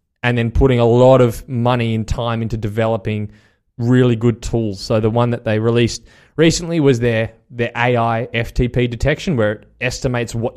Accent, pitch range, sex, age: Australian, 115-135 Hz, male, 20-39